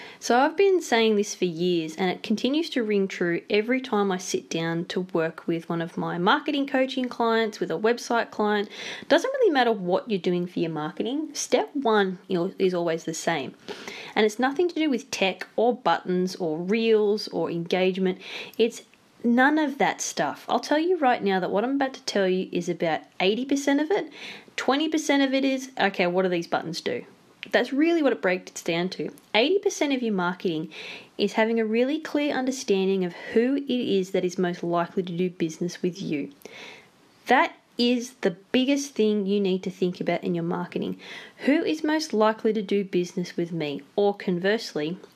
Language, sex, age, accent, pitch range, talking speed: English, female, 20-39, Australian, 180-255 Hz, 195 wpm